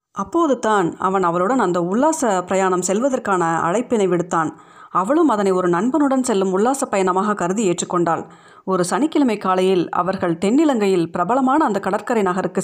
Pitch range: 180-230 Hz